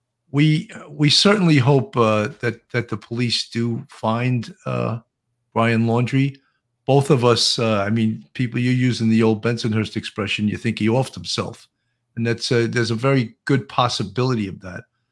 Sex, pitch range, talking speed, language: male, 110-130 Hz, 170 wpm, English